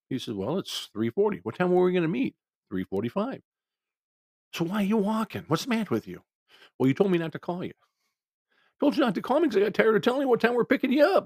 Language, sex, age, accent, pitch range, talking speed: English, male, 50-69, American, 100-160 Hz, 270 wpm